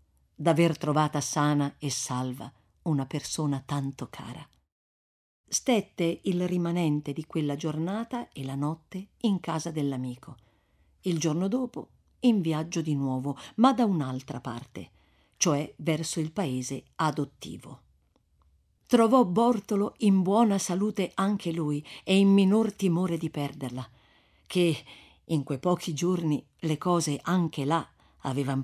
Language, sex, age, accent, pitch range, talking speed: Italian, female, 50-69, native, 130-180 Hz, 125 wpm